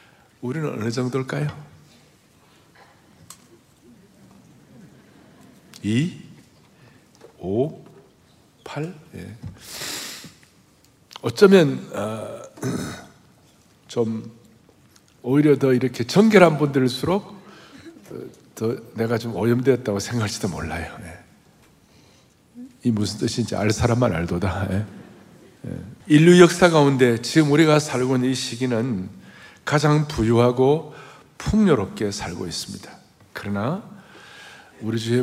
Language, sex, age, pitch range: Korean, male, 60-79, 115-175 Hz